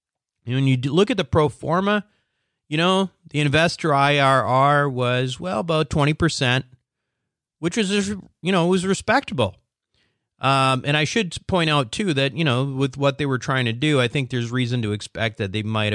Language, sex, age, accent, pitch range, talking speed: English, male, 40-59, American, 120-160 Hz, 185 wpm